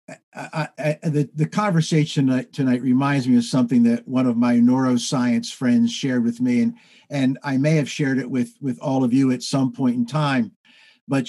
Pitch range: 130-170 Hz